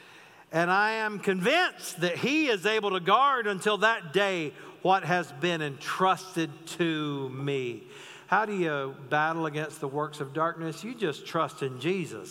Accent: American